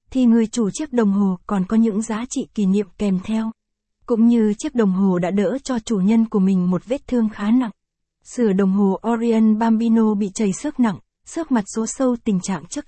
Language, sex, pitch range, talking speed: Vietnamese, female, 195-230 Hz, 225 wpm